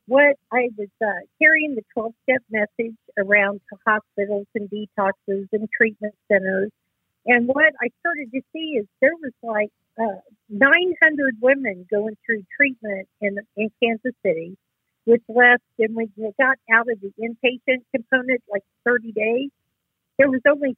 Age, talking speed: 50-69, 155 wpm